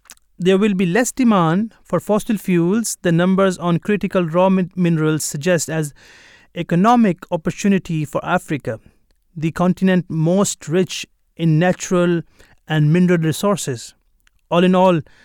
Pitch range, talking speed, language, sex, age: 150-185 Hz, 130 wpm, English, male, 30-49